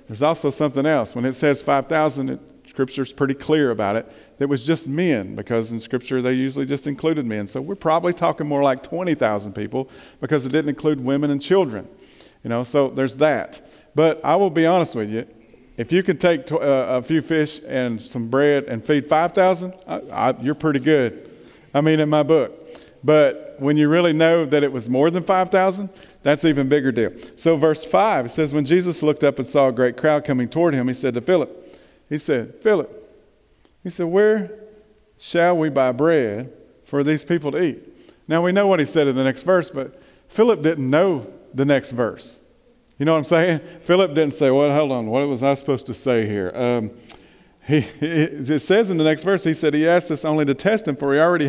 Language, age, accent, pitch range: English, 40-59, American, 135-170 Hz